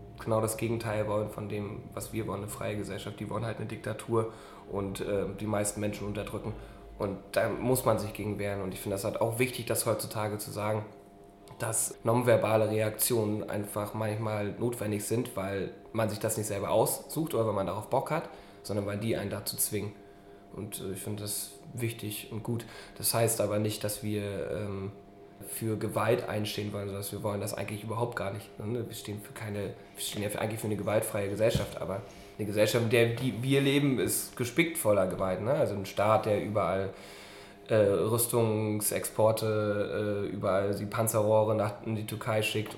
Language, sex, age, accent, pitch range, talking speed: German, male, 20-39, German, 100-115 Hz, 190 wpm